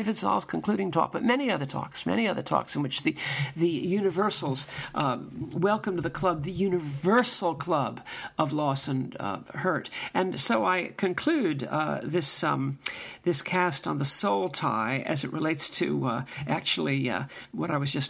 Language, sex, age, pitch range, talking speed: English, male, 50-69, 135-180 Hz, 175 wpm